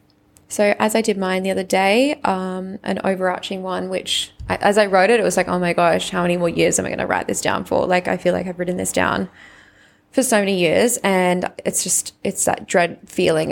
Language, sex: English, female